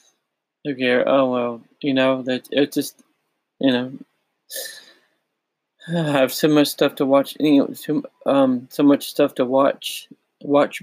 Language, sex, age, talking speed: English, male, 20-39, 150 wpm